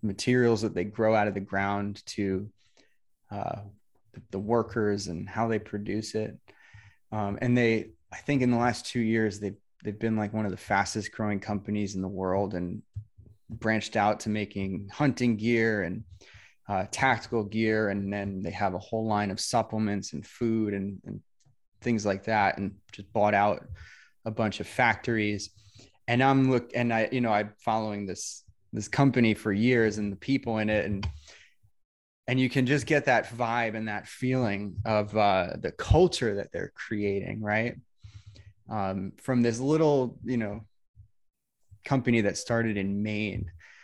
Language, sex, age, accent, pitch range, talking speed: English, male, 20-39, American, 100-115 Hz, 170 wpm